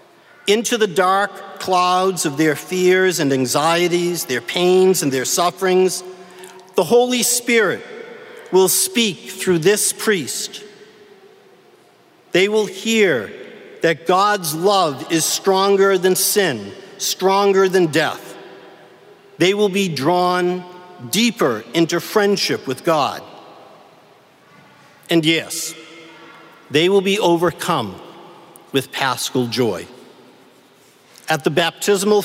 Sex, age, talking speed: male, 50-69, 105 wpm